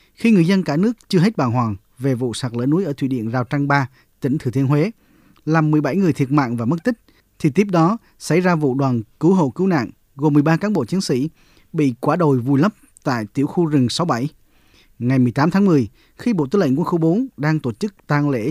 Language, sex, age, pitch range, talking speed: Vietnamese, male, 20-39, 130-170 Hz, 245 wpm